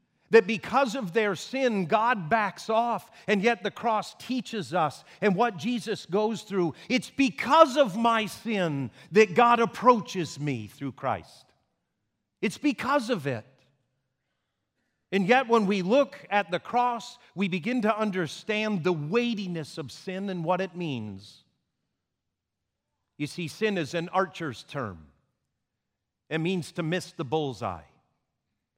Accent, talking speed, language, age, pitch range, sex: American, 140 wpm, English, 50-69, 135-200 Hz, male